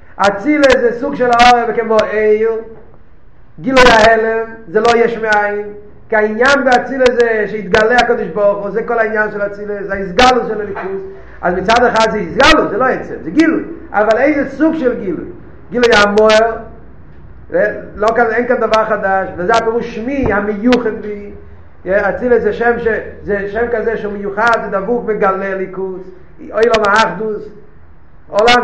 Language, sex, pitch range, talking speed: Hebrew, male, 195-230 Hz, 155 wpm